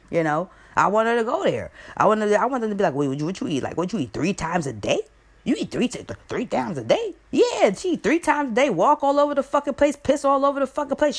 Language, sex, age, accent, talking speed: English, female, 20-39, American, 300 wpm